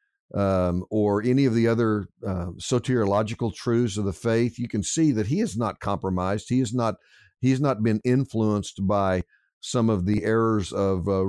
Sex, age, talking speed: male, 50-69, 170 wpm